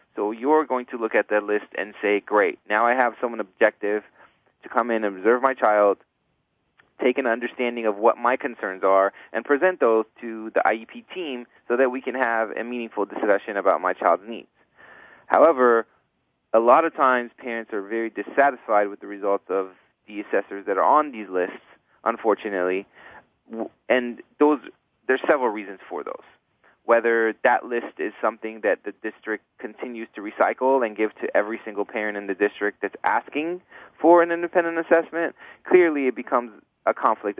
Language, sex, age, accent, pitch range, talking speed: English, male, 30-49, American, 105-125 Hz, 175 wpm